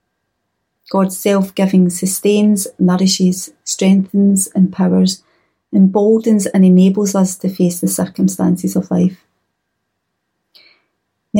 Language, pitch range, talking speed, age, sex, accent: English, 180-195 Hz, 90 wpm, 30-49, female, British